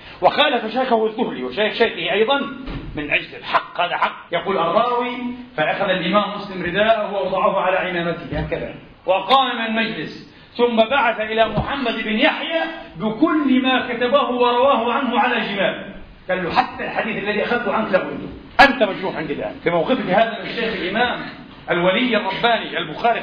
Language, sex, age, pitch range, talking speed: Arabic, male, 40-59, 190-245 Hz, 145 wpm